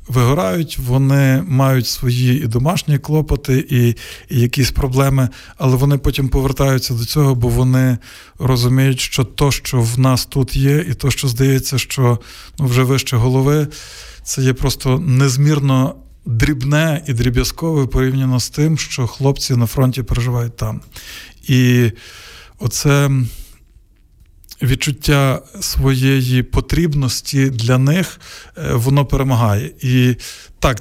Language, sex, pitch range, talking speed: Ukrainian, male, 125-140 Hz, 125 wpm